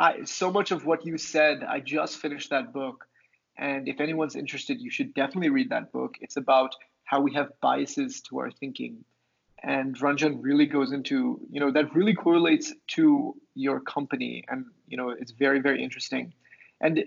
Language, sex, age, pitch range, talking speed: English, male, 20-39, 135-185 Hz, 180 wpm